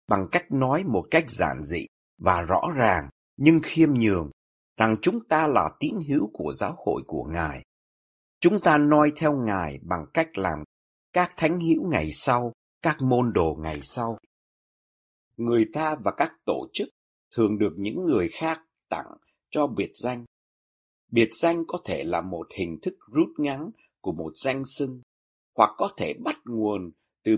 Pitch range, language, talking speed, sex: 100-160 Hz, Vietnamese, 170 wpm, male